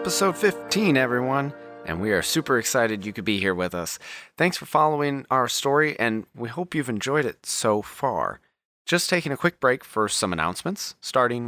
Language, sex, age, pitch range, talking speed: English, male, 30-49, 100-140 Hz, 190 wpm